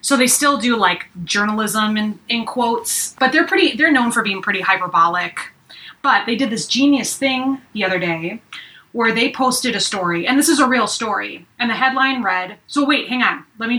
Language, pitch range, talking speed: English, 205-260 Hz, 210 wpm